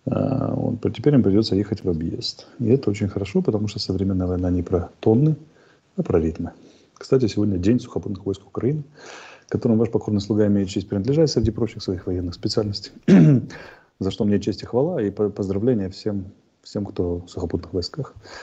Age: 30-49